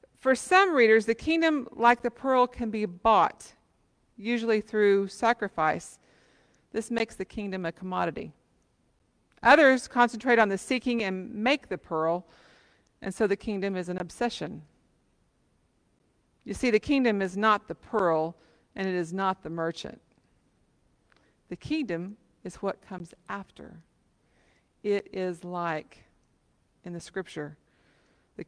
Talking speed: 135 wpm